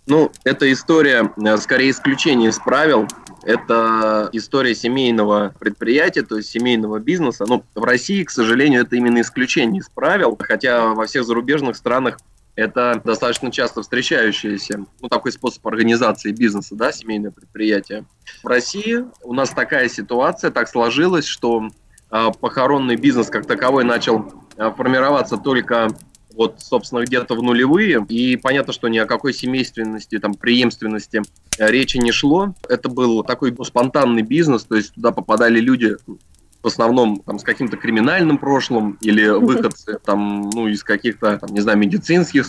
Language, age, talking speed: Russian, 20-39, 145 wpm